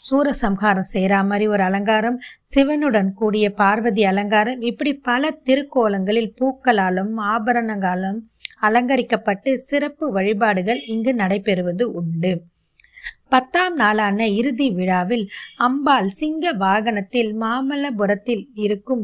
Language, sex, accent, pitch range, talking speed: Tamil, female, native, 200-260 Hz, 90 wpm